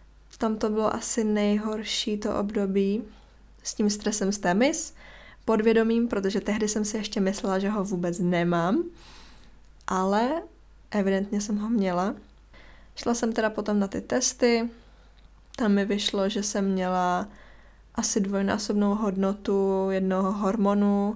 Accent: native